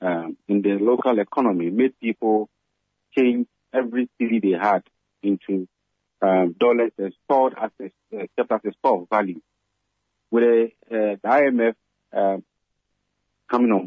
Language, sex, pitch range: English, male, 100-120 Hz